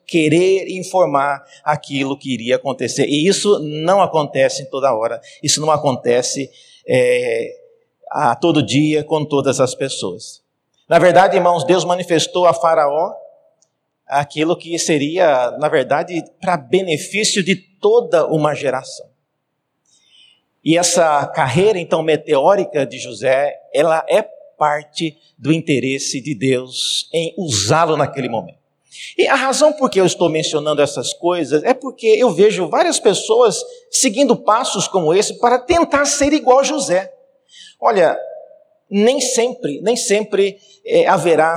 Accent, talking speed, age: Brazilian, 135 wpm, 50-69